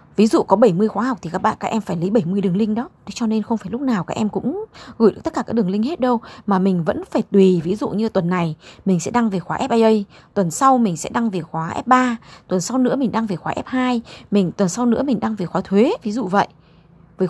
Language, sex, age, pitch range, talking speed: Vietnamese, female, 20-39, 195-255 Hz, 280 wpm